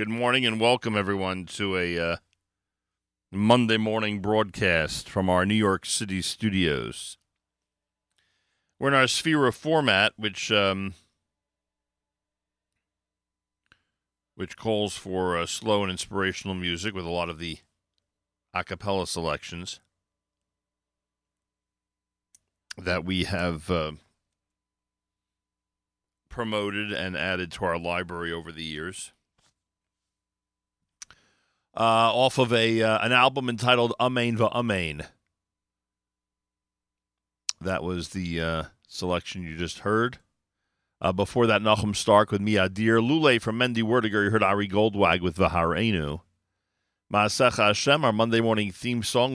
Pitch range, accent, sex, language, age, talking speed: 90-110 Hz, American, male, English, 40-59, 115 wpm